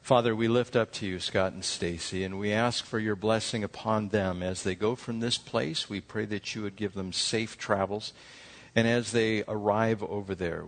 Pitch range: 90-105 Hz